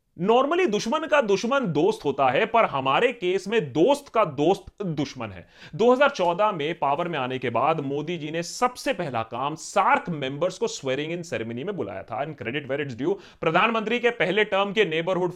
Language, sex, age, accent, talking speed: Hindi, male, 30-49, native, 190 wpm